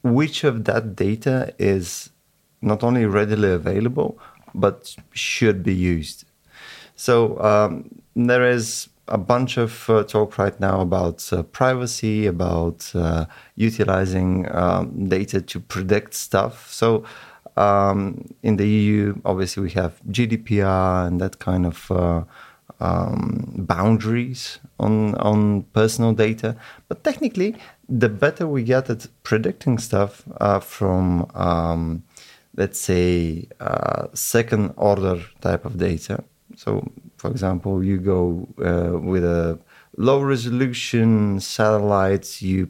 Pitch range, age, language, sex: 95-120 Hz, 30-49, Bulgarian, male